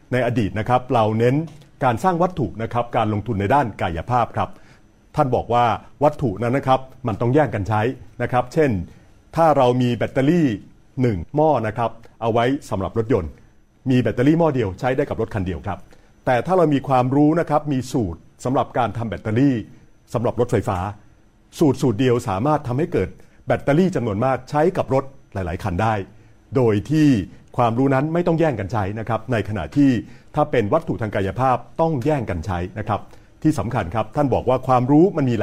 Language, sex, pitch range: Thai, male, 105-145 Hz